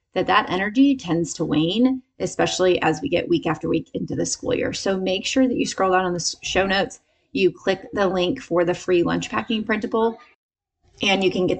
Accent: American